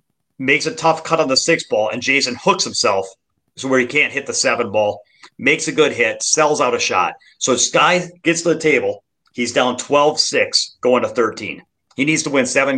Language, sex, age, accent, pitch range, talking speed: English, male, 30-49, American, 130-170 Hz, 215 wpm